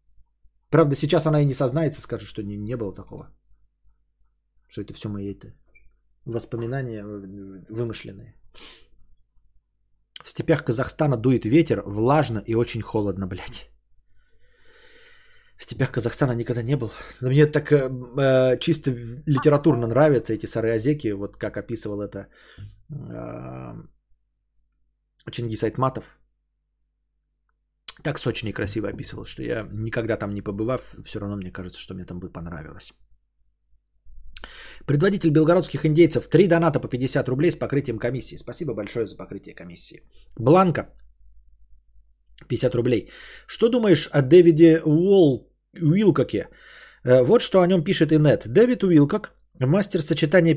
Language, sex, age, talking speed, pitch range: Bulgarian, male, 20-39, 120 wpm, 110-155 Hz